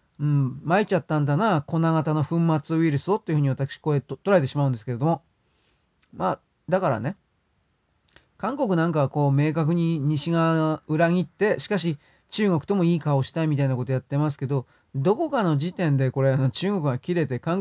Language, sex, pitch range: Japanese, male, 135-170 Hz